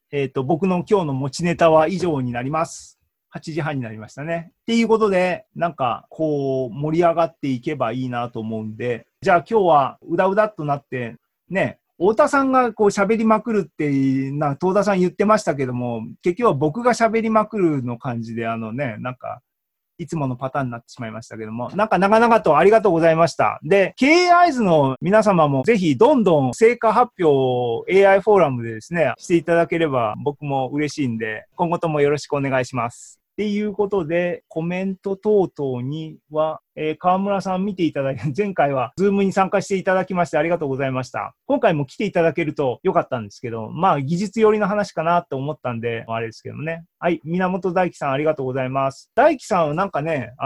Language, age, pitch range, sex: Japanese, 40-59, 130-195 Hz, male